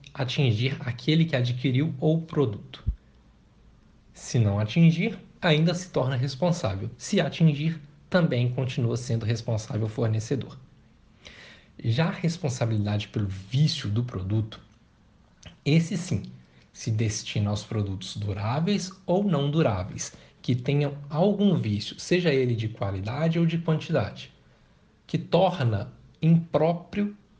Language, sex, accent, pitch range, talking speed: Portuguese, male, Brazilian, 110-160 Hz, 110 wpm